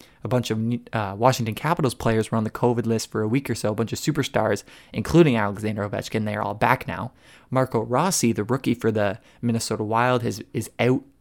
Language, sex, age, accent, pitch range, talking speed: English, male, 20-39, American, 110-125 Hz, 210 wpm